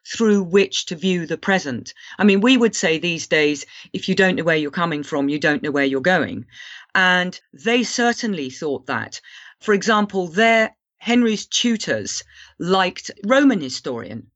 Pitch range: 170-235 Hz